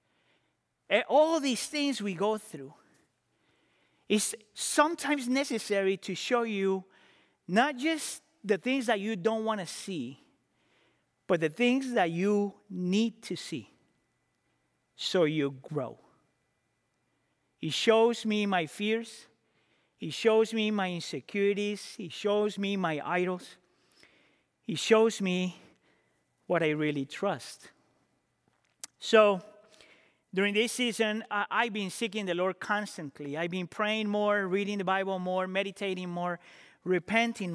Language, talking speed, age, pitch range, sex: English, 125 wpm, 40-59, 180-230 Hz, male